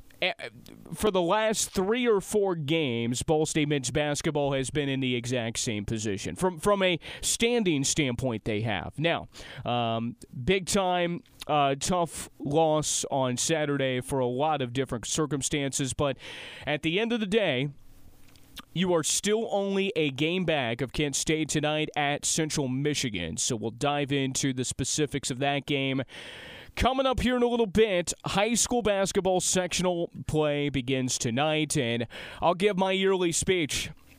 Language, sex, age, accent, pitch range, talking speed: English, male, 30-49, American, 125-170 Hz, 160 wpm